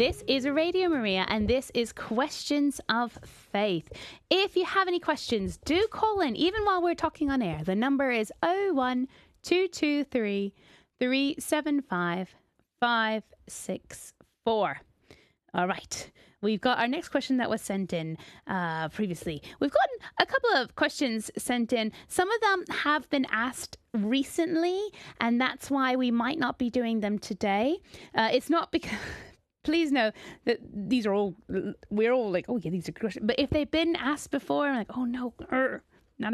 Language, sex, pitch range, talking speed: English, female, 200-295 Hz, 160 wpm